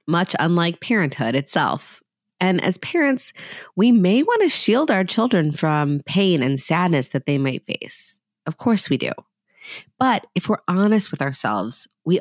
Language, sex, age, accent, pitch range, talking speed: English, female, 30-49, American, 135-185 Hz, 160 wpm